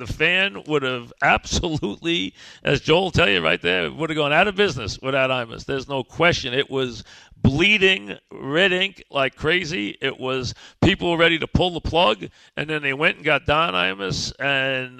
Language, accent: English, American